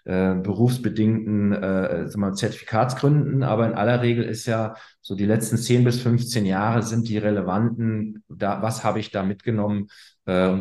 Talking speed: 165 wpm